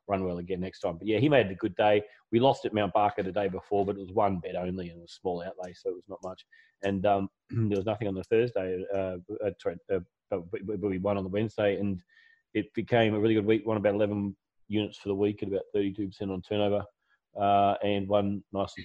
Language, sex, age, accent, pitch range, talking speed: English, male, 30-49, Australian, 100-120 Hz, 240 wpm